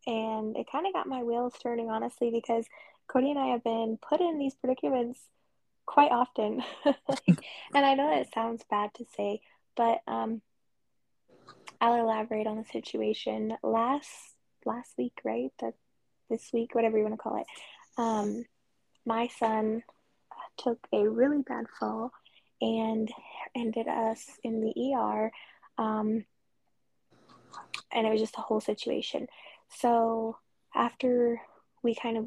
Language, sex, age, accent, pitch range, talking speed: English, female, 10-29, American, 215-245 Hz, 145 wpm